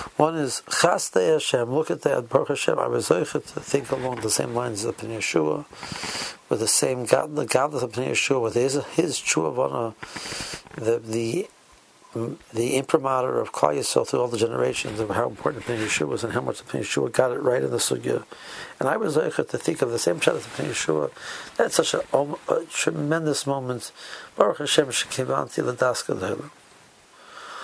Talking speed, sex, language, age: 170 wpm, male, English, 60-79